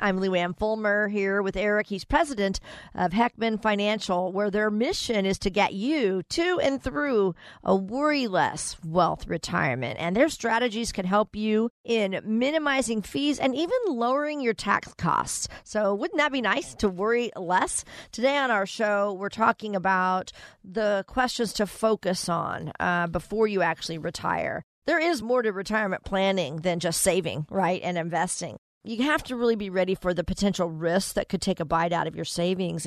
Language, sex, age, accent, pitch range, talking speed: English, female, 50-69, American, 180-230 Hz, 175 wpm